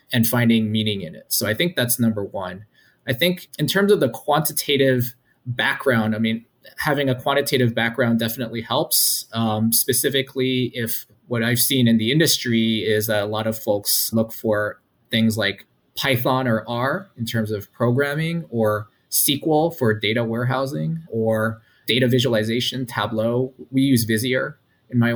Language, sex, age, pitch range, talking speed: English, male, 20-39, 110-130 Hz, 160 wpm